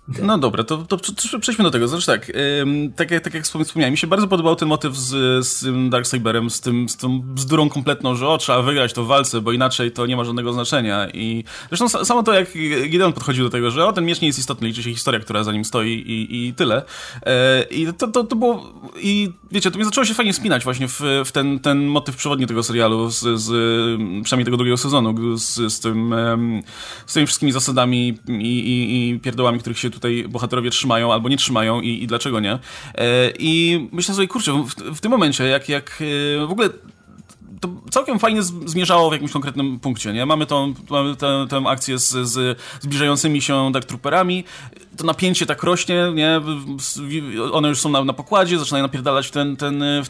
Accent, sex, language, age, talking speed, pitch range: native, male, Polish, 20-39, 210 wpm, 120-160 Hz